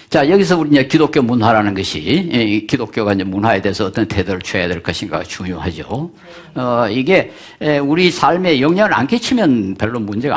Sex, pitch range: male, 100-155 Hz